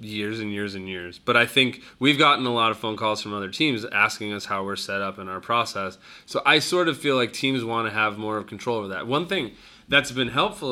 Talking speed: 265 wpm